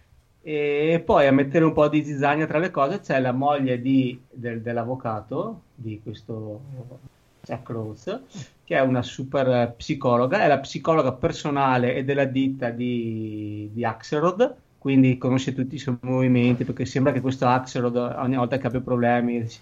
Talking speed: 160 wpm